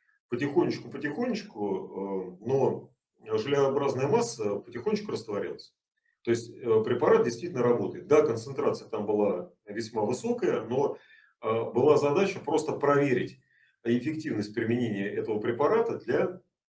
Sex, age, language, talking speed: male, 40-59, Russian, 100 wpm